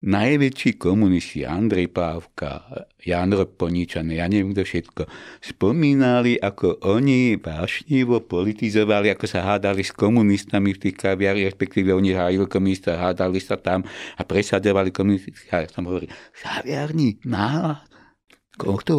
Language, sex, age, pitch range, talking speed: Slovak, male, 60-79, 90-105 Hz, 125 wpm